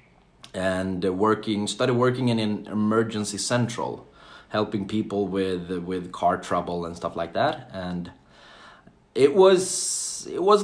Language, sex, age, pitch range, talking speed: Finnish, male, 30-49, 90-115 Hz, 130 wpm